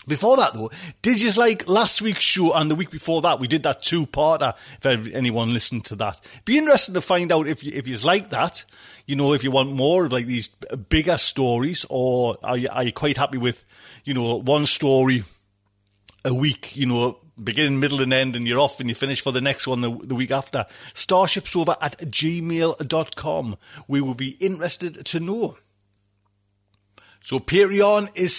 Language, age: English, 30-49